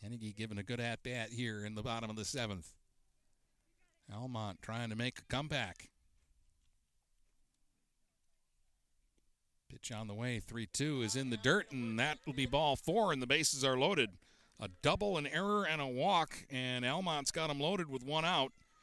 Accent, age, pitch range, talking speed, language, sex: American, 50-69, 110-145 Hz, 170 wpm, English, male